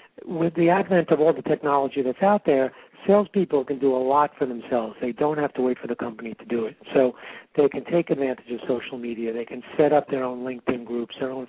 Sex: male